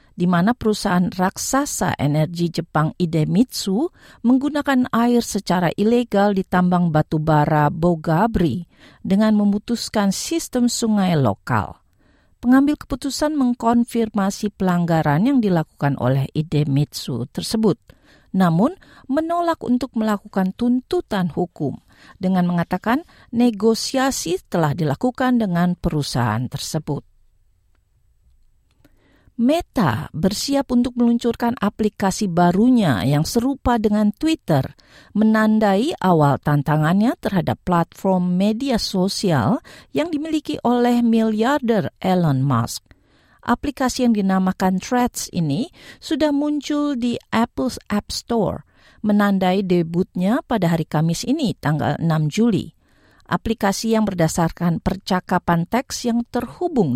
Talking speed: 100 wpm